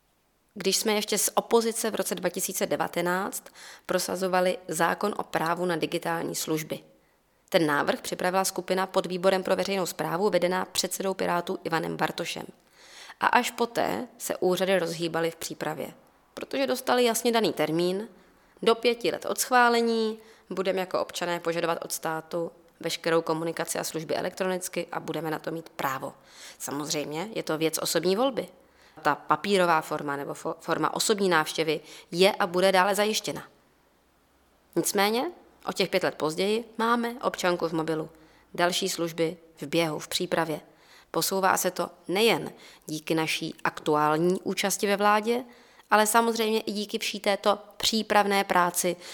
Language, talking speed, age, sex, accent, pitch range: Czech, 140 wpm, 20-39, female, native, 165-200 Hz